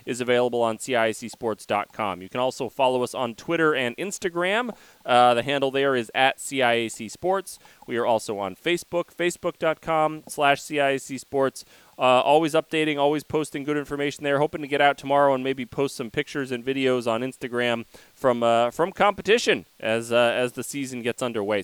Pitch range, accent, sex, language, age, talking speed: 125-165 Hz, American, male, English, 30-49, 170 wpm